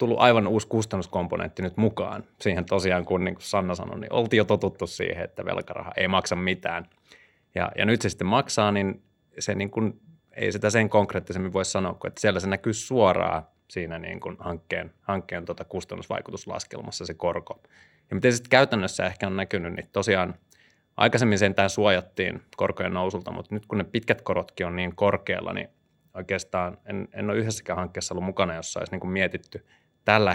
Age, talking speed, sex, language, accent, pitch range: 30-49, 180 wpm, male, Finnish, native, 90-110 Hz